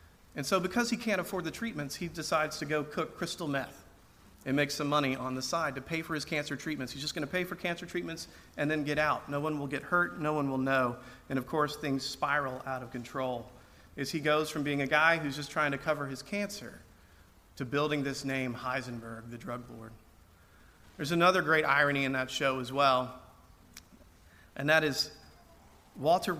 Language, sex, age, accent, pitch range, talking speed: English, male, 40-59, American, 130-170 Hz, 210 wpm